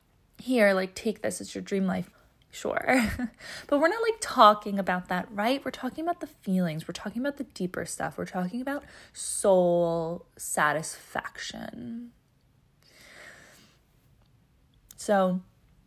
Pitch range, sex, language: 180-225 Hz, female, English